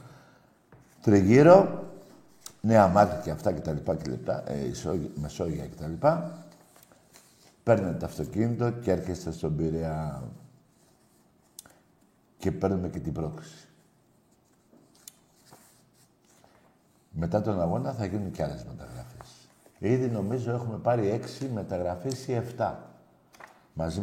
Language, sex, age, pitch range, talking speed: Greek, male, 60-79, 90-135 Hz, 110 wpm